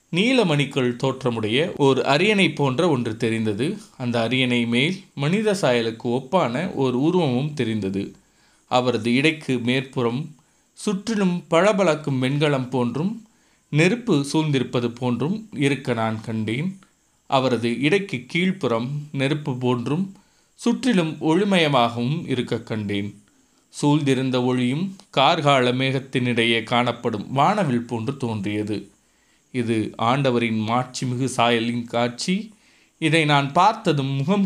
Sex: male